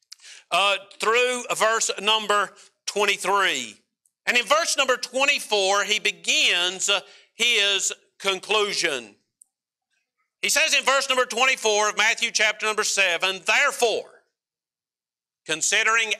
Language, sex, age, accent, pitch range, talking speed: English, male, 50-69, American, 195-235 Hz, 105 wpm